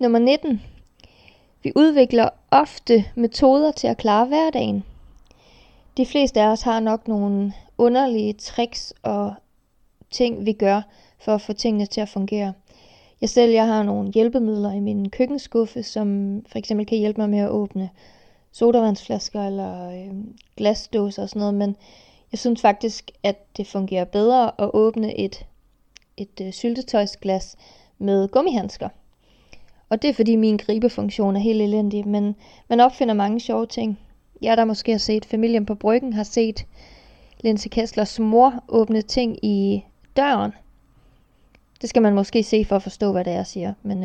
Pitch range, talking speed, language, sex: 200-235 Hz, 160 wpm, Danish, female